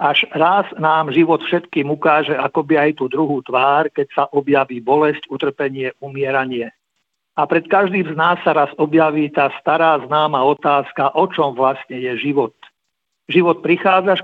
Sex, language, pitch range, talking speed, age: male, Slovak, 140-175 Hz, 150 wpm, 50-69